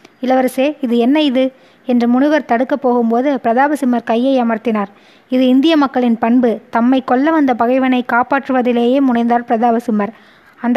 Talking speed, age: 130 wpm, 20-39